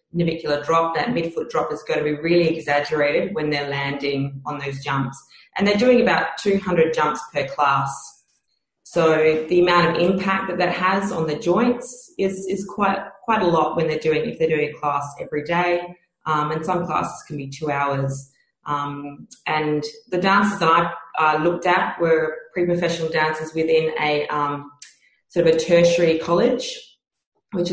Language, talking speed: English, 175 wpm